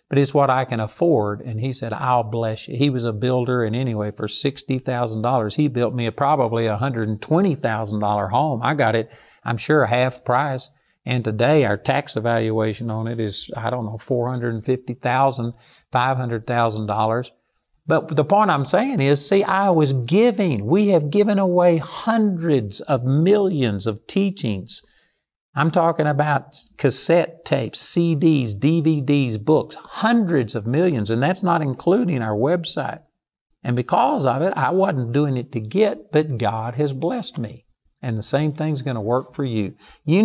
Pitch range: 115-160 Hz